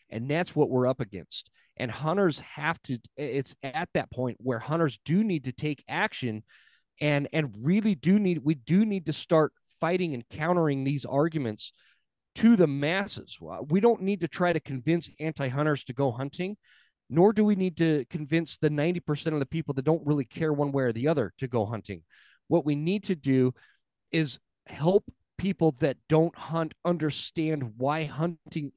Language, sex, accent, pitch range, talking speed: English, male, American, 130-165 Hz, 185 wpm